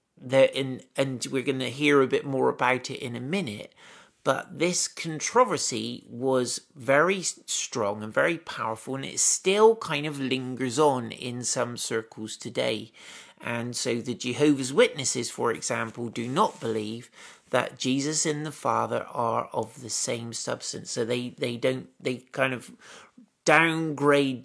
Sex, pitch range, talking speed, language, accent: male, 120-155 Hz, 150 wpm, English, British